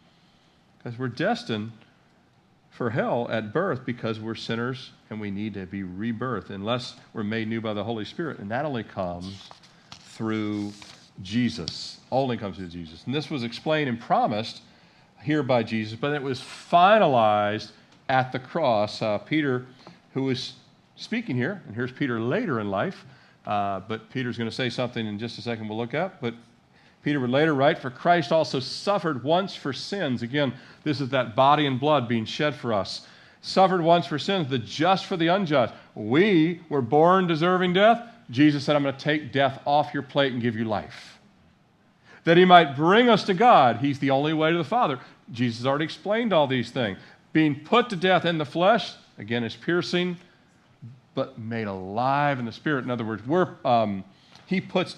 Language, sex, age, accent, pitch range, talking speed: English, male, 50-69, American, 115-155 Hz, 185 wpm